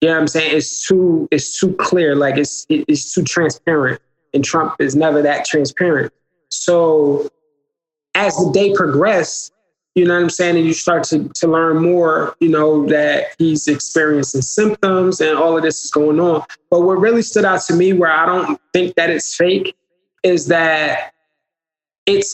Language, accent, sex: English, American, male